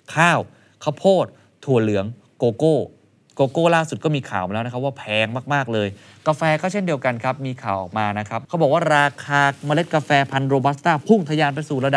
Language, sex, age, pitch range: Thai, male, 20-39, 105-145 Hz